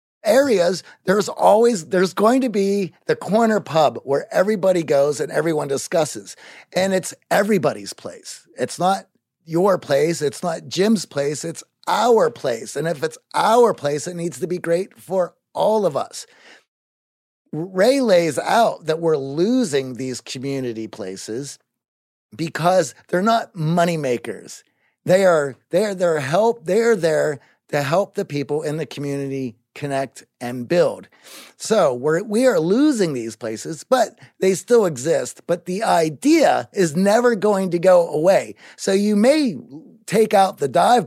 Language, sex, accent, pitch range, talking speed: English, male, American, 140-195 Hz, 150 wpm